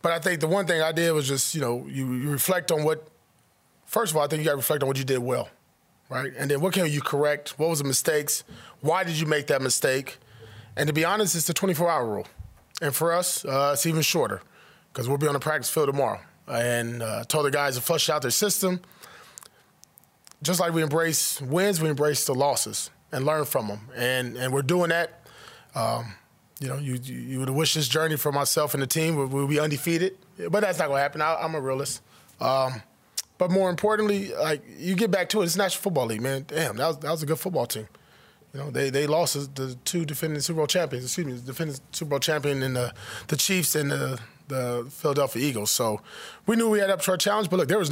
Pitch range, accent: 135-165 Hz, American